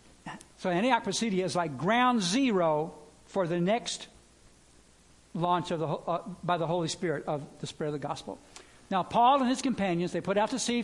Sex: male